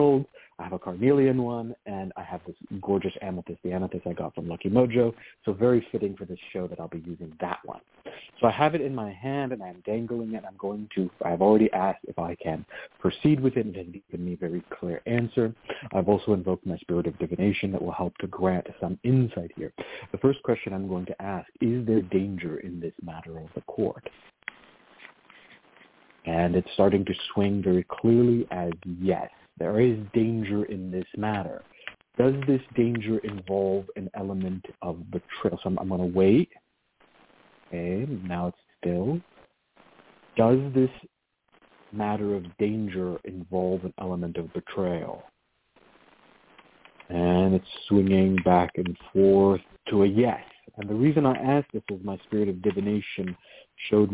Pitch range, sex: 90-115 Hz, male